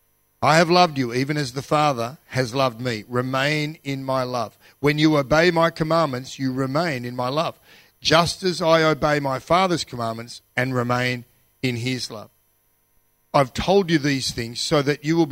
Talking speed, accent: 180 wpm, Australian